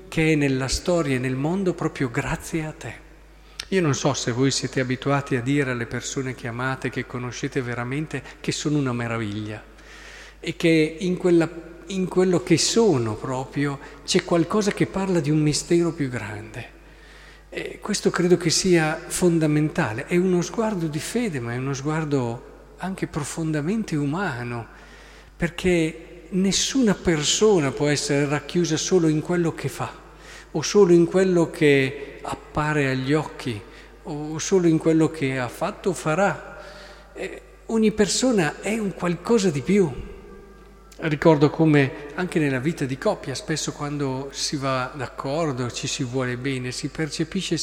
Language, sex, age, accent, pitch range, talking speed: Italian, male, 50-69, native, 140-180 Hz, 150 wpm